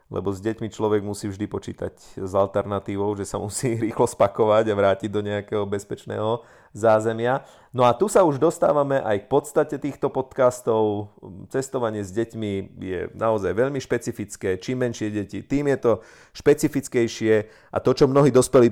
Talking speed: 160 wpm